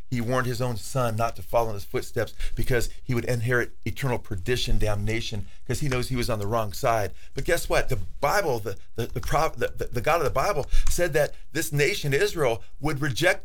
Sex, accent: male, American